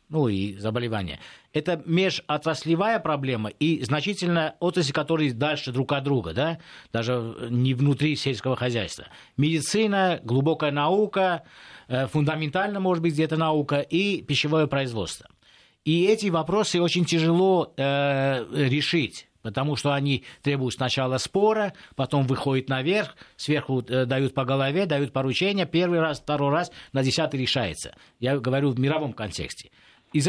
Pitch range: 130-165 Hz